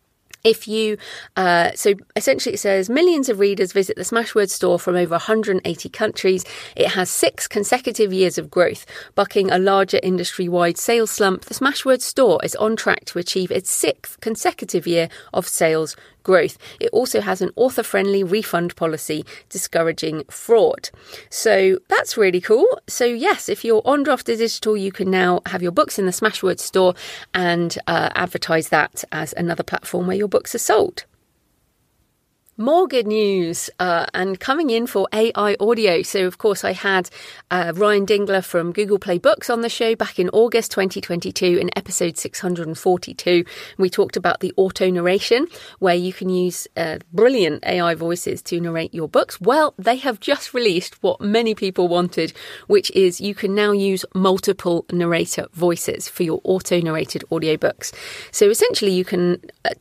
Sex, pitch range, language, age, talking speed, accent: female, 180-230 Hz, English, 40-59, 165 wpm, British